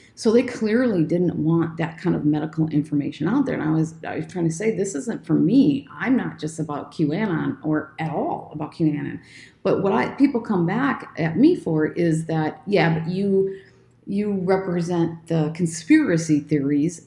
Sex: female